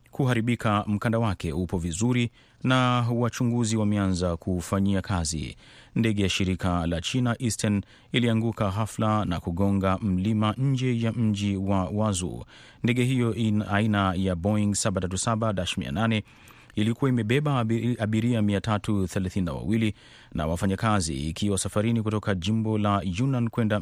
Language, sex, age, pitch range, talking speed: Swahili, male, 30-49, 95-115 Hz, 120 wpm